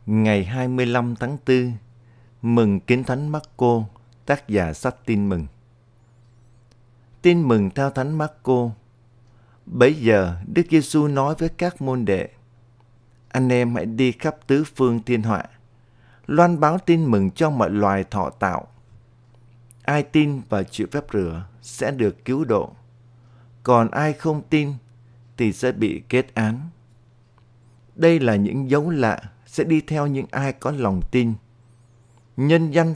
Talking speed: 145 wpm